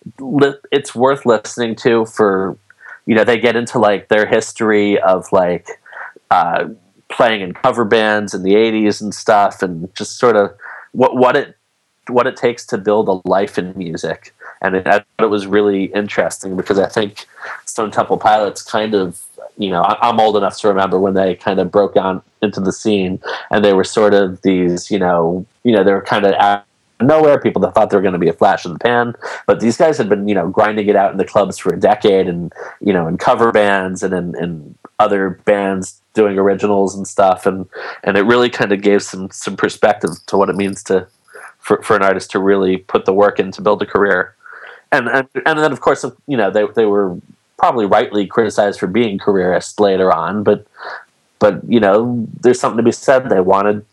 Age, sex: 30-49, male